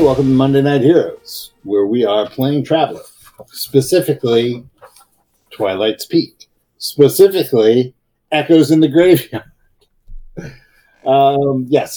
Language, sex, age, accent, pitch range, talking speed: English, male, 50-69, American, 110-150 Hz, 100 wpm